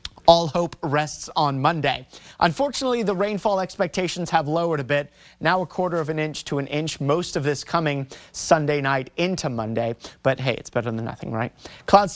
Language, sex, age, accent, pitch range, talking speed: English, male, 30-49, American, 135-170 Hz, 190 wpm